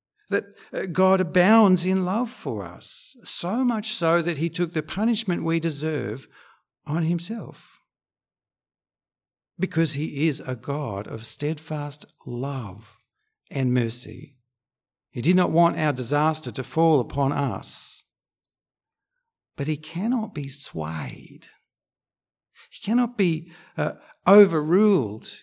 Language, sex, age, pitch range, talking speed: English, male, 60-79, 130-180 Hz, 115 wpm